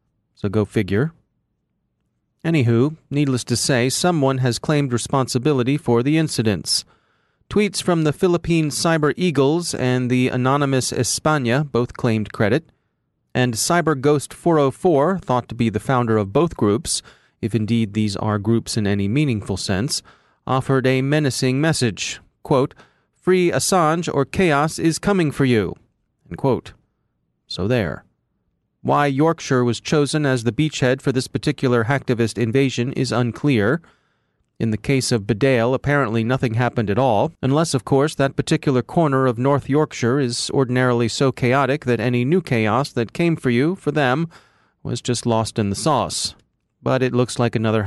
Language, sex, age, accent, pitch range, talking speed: English, male, 30-49, American, 115-145 Hz, 150 wpm